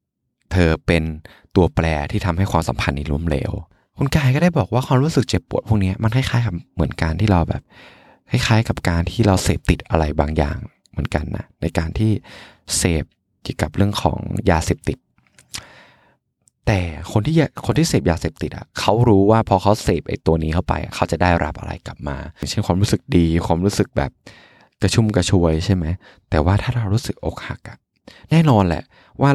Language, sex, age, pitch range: Thai, male, 20-39, 85-110 Hz